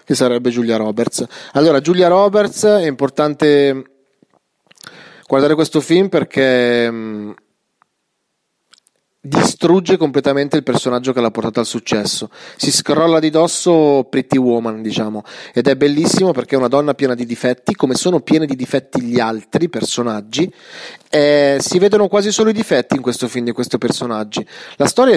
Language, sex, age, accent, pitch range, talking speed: Italian, male, 30-49, native, 125-155 Hz, 150 wpm